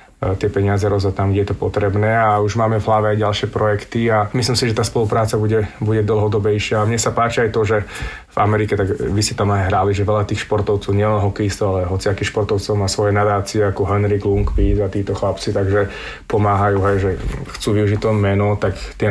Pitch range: 100-110 Hz